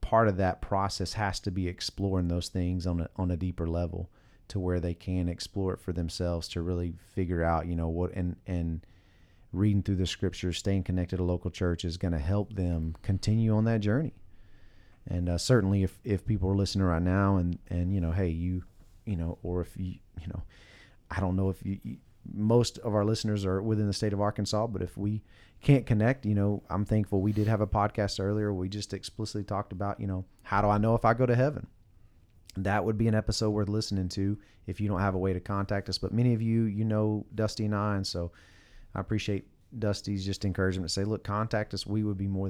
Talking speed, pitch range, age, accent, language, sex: 230 wpm, 90-105 Hz, 30-49, American, English, male